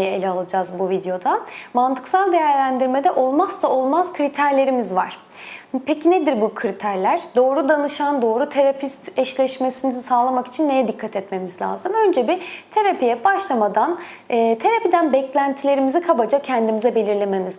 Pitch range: 235-320 Hz